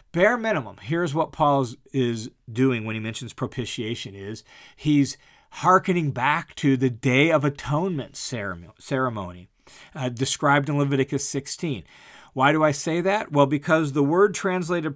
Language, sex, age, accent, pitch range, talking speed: English, male, 40-59, American, 135-180 Hz, 145 wpm